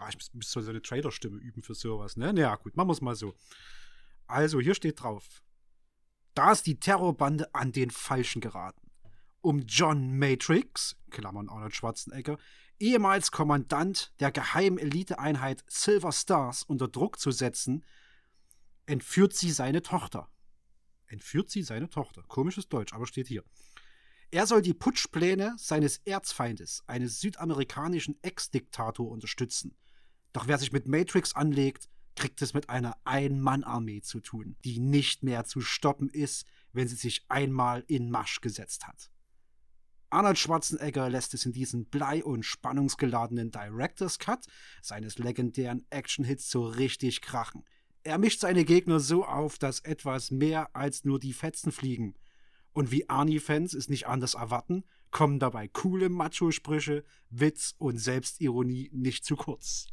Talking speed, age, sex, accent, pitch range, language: 145 wpm, 30-49, male, German, 120-155 Hz, German